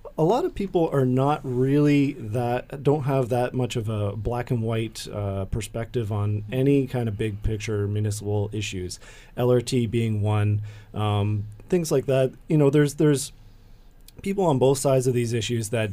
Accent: American